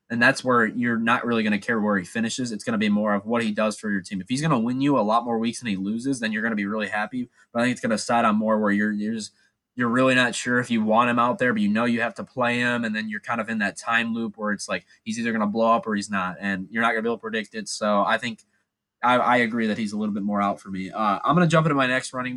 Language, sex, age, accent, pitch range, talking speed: English, male, 20-39, American, 110-145 Hz, 350 wpm